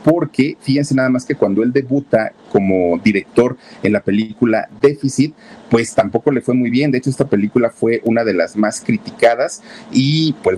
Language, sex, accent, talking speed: Spanish, male, Mexican, 180 wpm